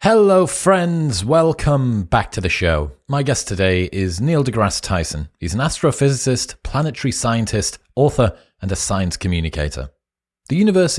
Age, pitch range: 30-49, 95-135 Hz